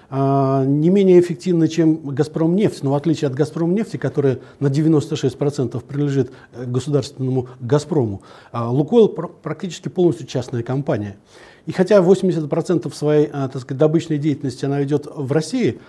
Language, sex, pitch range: Turkish, male, 140-175 Hz